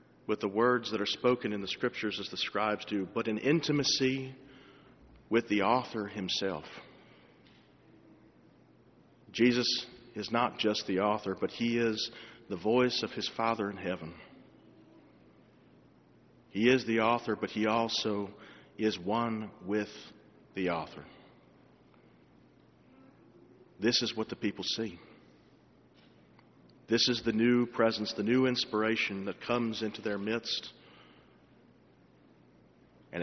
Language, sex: English, male